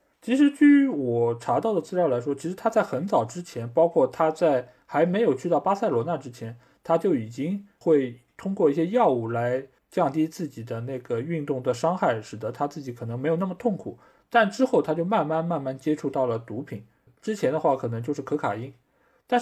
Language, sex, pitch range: Chinese, male, 125-170 Hz